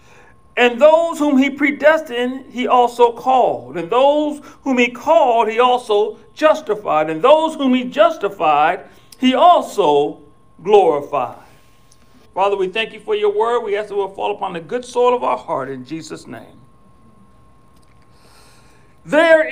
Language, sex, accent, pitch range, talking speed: English, male, American, 215-295 Hz, 145 wpm